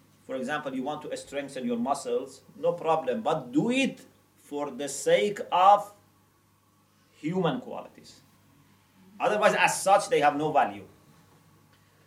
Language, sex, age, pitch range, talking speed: English, male, 40-59, 120-190 Hz, 130 wpm